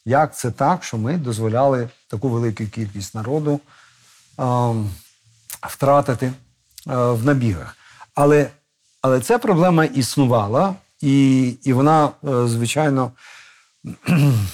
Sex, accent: male, native